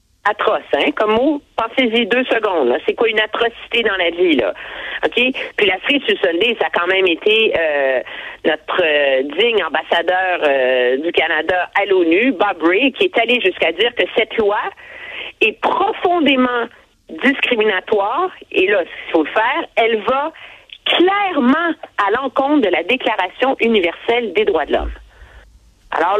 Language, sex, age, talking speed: French, female, 40-59, 160 wpm